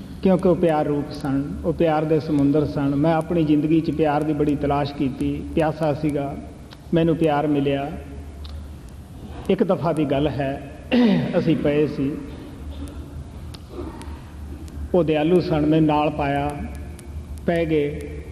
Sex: male